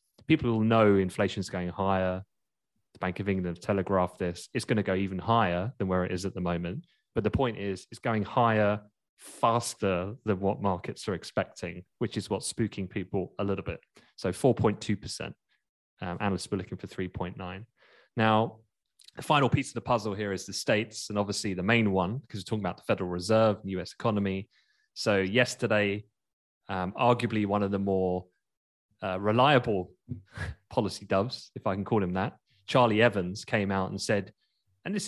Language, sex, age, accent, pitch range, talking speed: English, male, 20-39, British, 95-115 Hz, 185 wpm